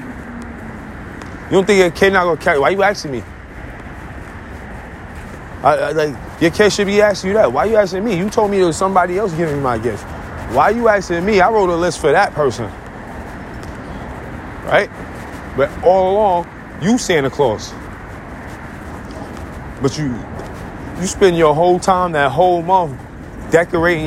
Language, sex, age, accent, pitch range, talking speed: English, male, 30-49, American, 155-210 Hz, 170 wpm